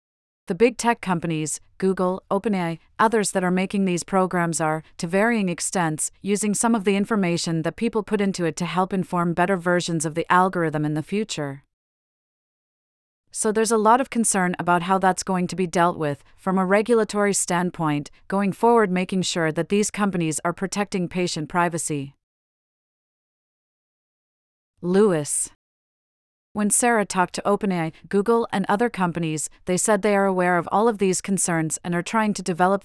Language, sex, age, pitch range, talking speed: English, female, 40-59, 165-205 Hz, 165 wpm